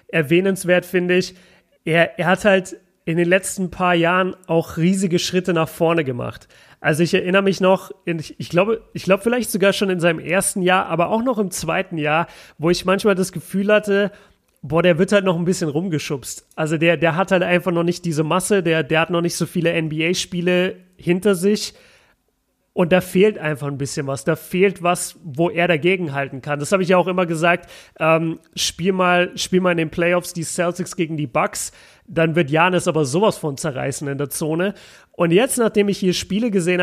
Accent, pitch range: German, 165-195 Hz